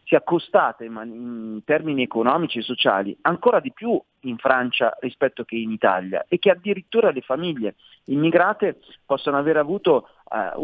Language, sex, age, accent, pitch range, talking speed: Italian, male, 40-59, native, 115-155 Hz, 145 wpm